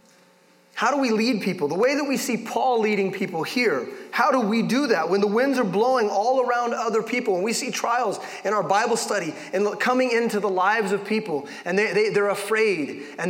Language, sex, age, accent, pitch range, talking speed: English, male, 30-49, American, 190-255 Hz, 210 wpm